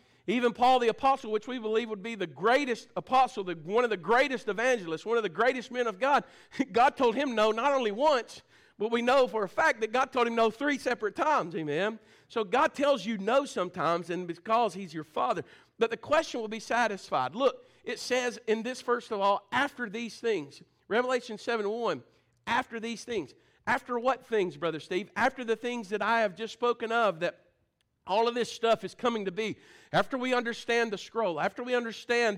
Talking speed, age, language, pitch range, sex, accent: 205 wpm, 50-69, English, 205-250 Hz, male, American